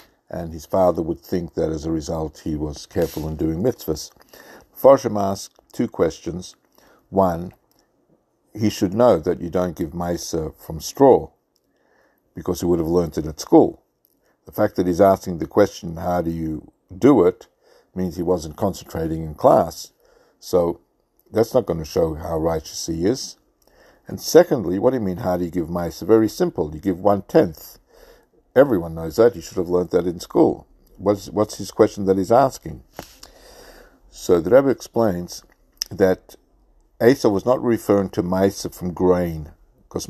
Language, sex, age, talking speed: English, male, 60-79, 170 wpm